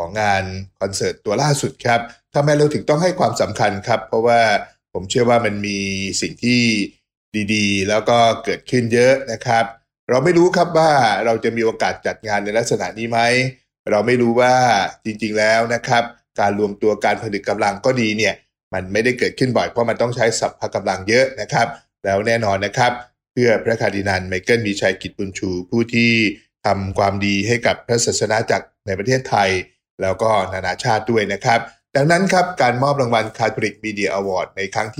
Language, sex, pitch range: English, male, 100-125 Hz